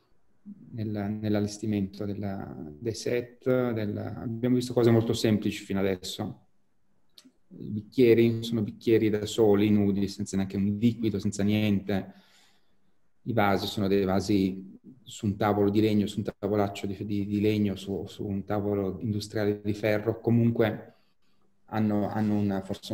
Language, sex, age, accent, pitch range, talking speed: English, male, 30-49, Italian, 100-115 Hz, 135 wpm